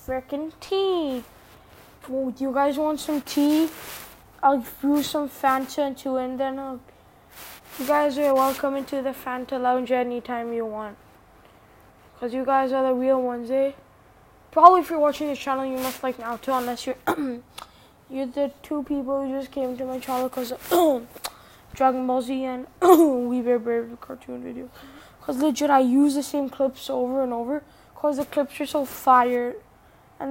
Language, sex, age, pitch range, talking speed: English, female, 10-29, 255-280 Hz, 170 wpm